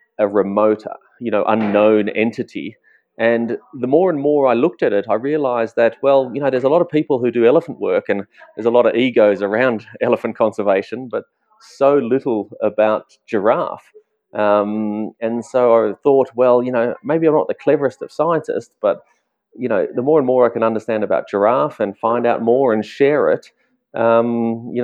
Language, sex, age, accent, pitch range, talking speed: English, male, 30-49, Australian, 105-125 Hz, 195 wpm